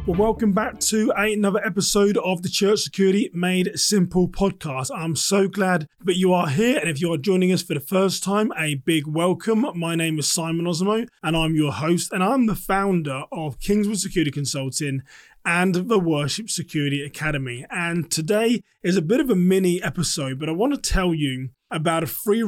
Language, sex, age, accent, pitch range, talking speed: English, male, 20-39, British, 155-195 Hz, 190 wpm